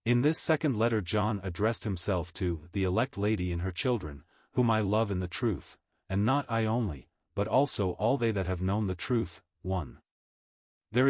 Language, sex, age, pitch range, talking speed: English, male, 40-59, 95-120 Hz, 190 wpm